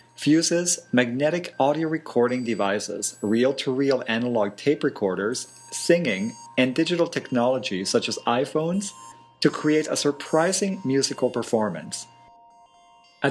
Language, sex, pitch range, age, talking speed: English, male, 115-145 Hz, 40-59, 105 wpm